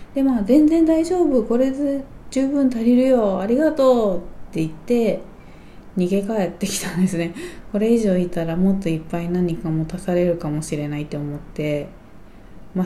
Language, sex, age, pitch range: Japanese, female, 20-39, 160-215 Hz